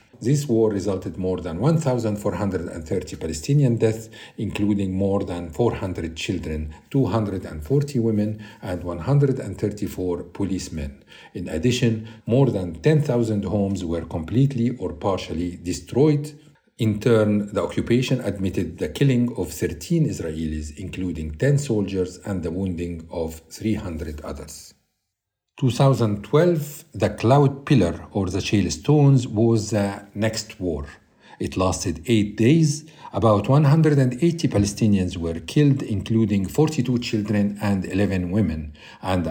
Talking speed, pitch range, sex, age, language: 115 wpm, 90-120 Hz, male, 50-69, Arabic